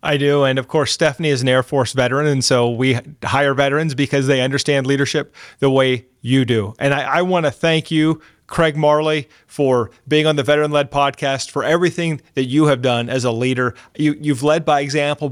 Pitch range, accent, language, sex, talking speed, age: 135-155 Hz, American, English, male, 210 wpm, 30-49